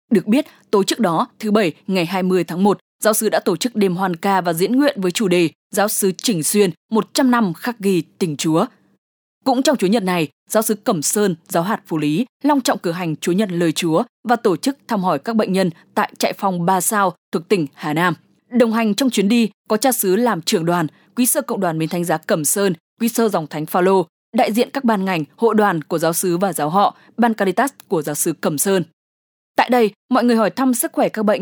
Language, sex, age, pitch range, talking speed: English, female, 20-39, 175-235 Hz, 320 wpm